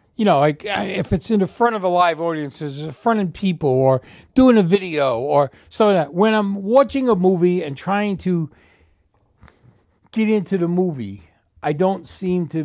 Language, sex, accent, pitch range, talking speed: English, male, American, 135-225 Hz, 195 wpm